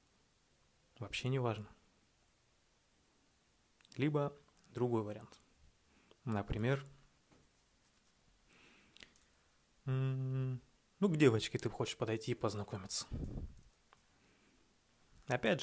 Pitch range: 105-125 Hz